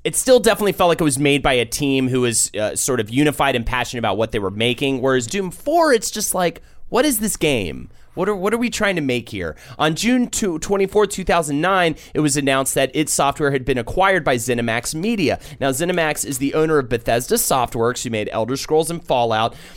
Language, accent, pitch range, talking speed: English, American, 120-180 Hz, 225 wpm